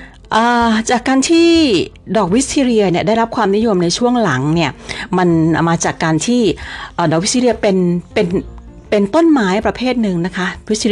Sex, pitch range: female, 160-220 Hz